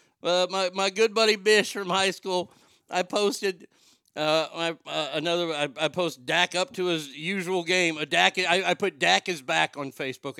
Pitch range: 150-185 Hz